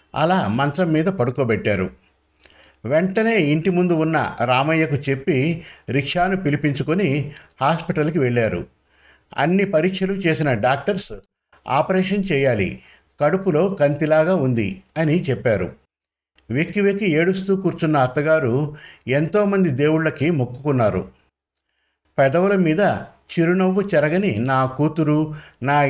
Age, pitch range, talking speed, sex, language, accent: 50-69, 125-175 Hz, 95 wpm, male, Telugu, native